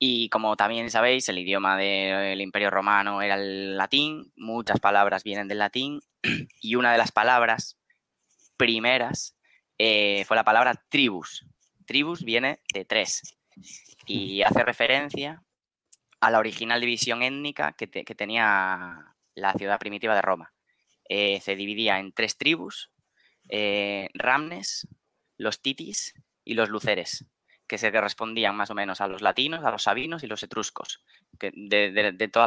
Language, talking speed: Spanish, 150 wpm